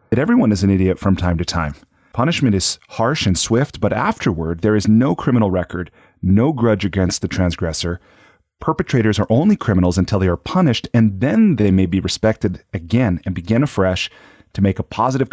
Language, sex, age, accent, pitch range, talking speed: English, male, 30-49, American, 95-115 Hz, 185 wpm